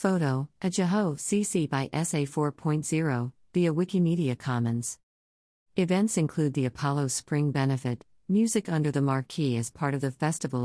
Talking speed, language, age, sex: 140 wpm, English, 50-69, female